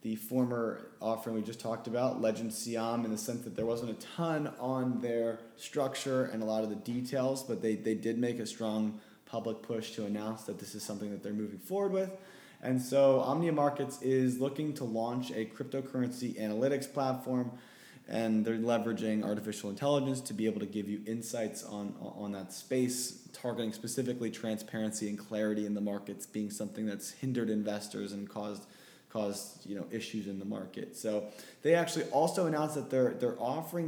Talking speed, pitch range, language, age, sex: 185 wpm, 110-130 Hz, English, 20-39, male